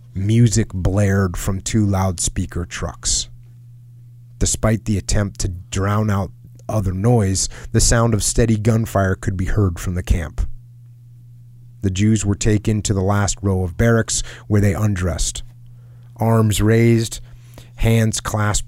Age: 30-49